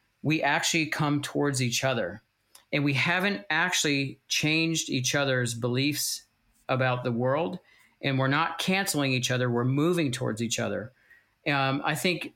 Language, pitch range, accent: English, 120-155 Hz, American